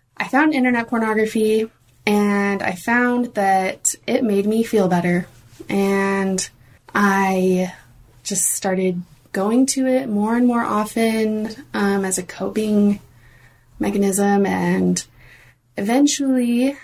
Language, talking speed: English, 110 wpm